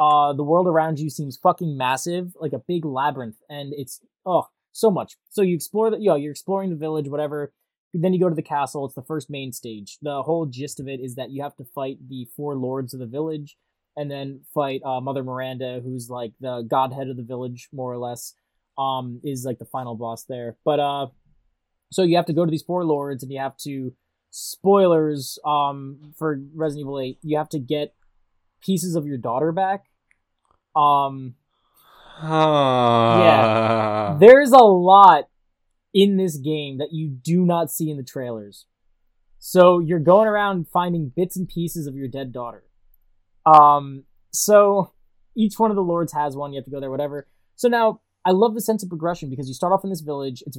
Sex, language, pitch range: male, English, 130-165 Hz